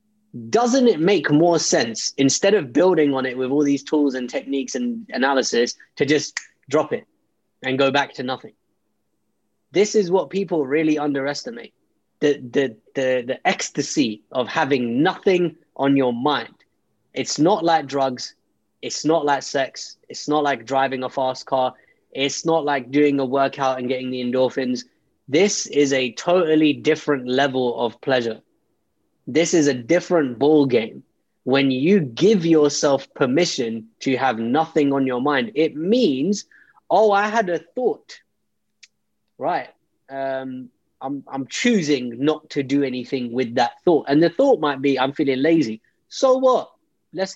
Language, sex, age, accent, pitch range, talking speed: English, male, 20-39, British, 130-175 Hz, 155 wpm